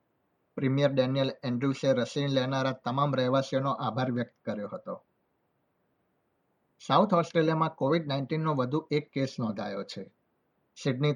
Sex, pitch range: male, 125-145 Hz